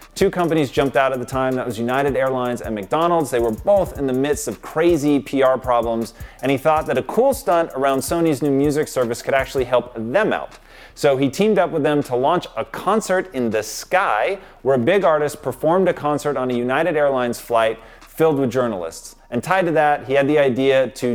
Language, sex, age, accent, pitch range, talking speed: English, male, 30-49, American, 125-155 Hz, 220 wpm